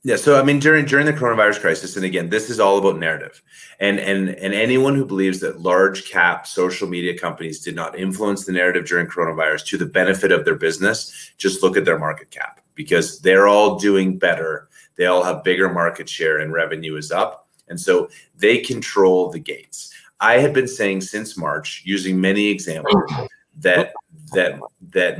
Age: 30-49